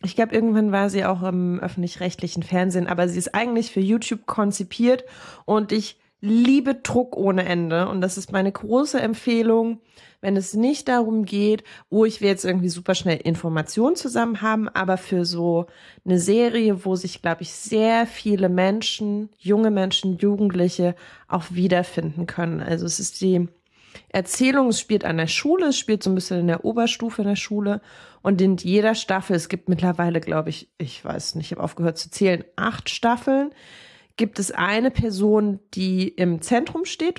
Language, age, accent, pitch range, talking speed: German, 30-49, German, 180-220 Hz, 175 wpm